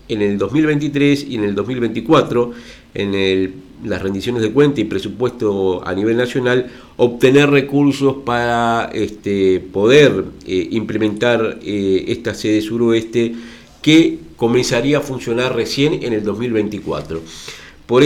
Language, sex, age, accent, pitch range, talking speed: Spanish, male, 50-69, Argentinian, 105-125 Hz, 125 wpm